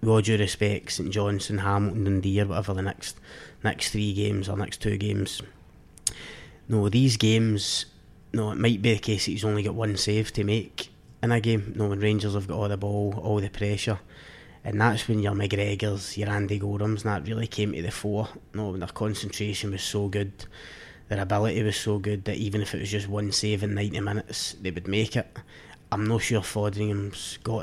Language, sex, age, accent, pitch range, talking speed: English, male, 20-39, British, 100-110 Hz, 210 wpm